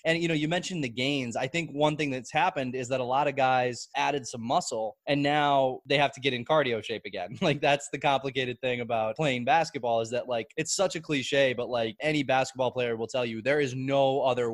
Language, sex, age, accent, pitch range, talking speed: English, male, 20-39, American, 115-140 Hz, 245 wpm